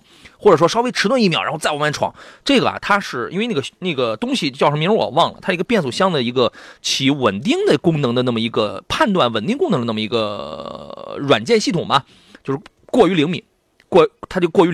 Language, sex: Chinese, male